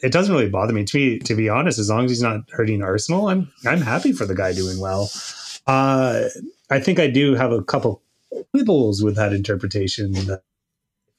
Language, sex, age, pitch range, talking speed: English, male, 30-49, 100-125 Hz, 205 wpm